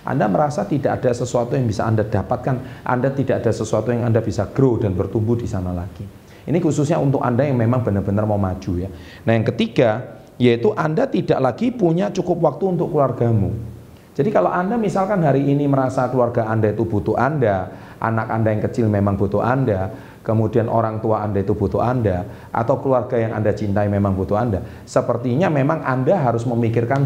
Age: 40-59